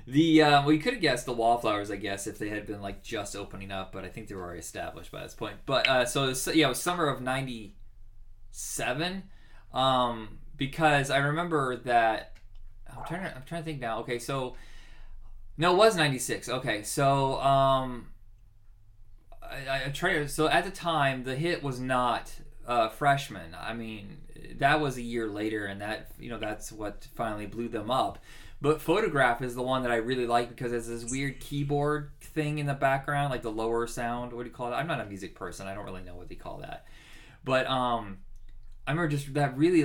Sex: male